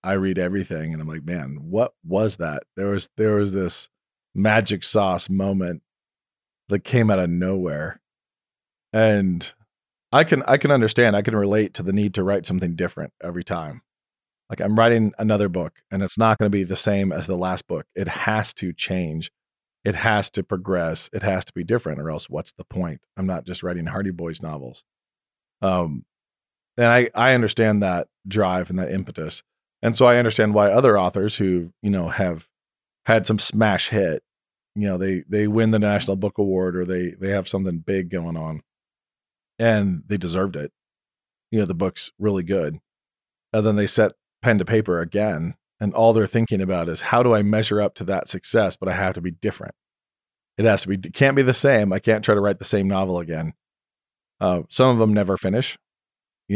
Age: 40-59